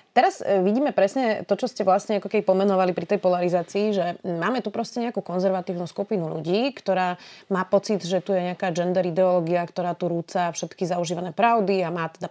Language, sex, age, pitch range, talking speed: Slovak, female, 30-49, 180-210 Hz, 190 wpm